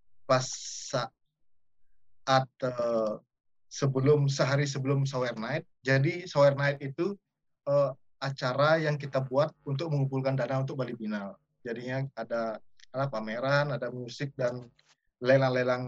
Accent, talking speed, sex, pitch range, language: native, 115 wpm, male, 115-150 Hz, Indonesian